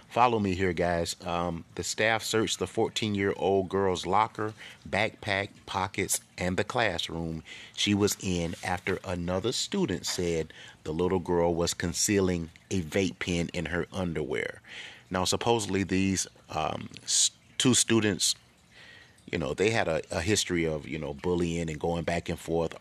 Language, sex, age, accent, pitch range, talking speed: English, male, 30-49, American, 85-95 Hz, 155 wpm